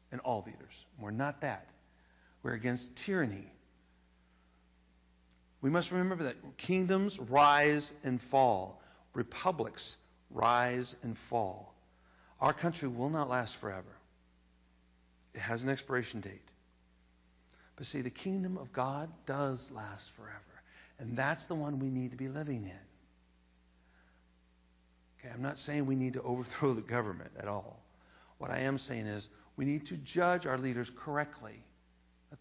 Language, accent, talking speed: English, American, 140 wpm